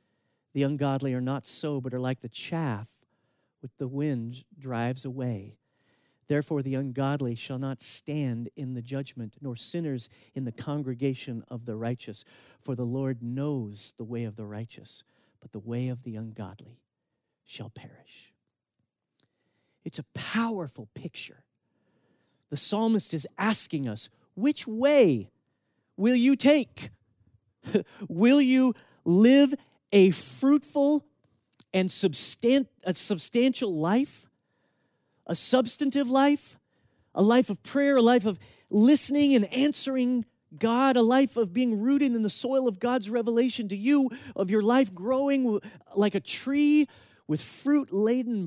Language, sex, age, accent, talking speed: English, male, 40-59, American, 135 wpm